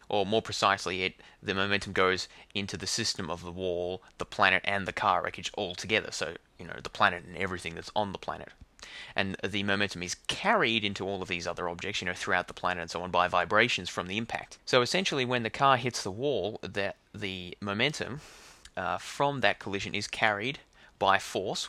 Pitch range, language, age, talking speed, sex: 90-110 Hz, English, 20-39, 210 wpm, male